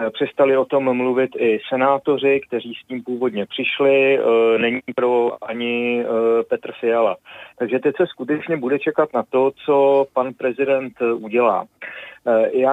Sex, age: male, 40-59